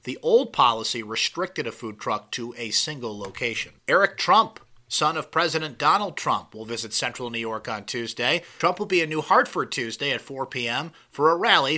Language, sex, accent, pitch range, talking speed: English, male, American, 120-160 Hz, 195 wpm